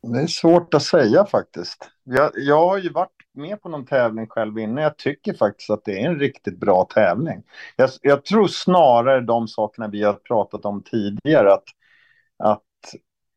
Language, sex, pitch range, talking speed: Swedish, male, 110-160 Hz, 180 wpm